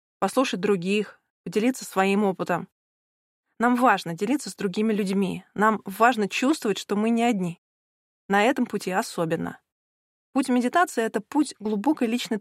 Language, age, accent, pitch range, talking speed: Russian, 20-39, native, 195-235 Hz, 140 wpm